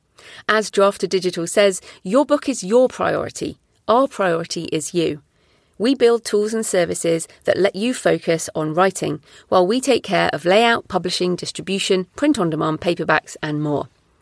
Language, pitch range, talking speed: English, 175-240 Hz, 150 wpm